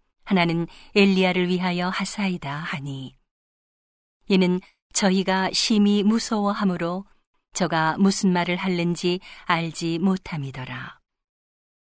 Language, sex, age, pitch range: Korean, female, 40-59, 165-200 Hz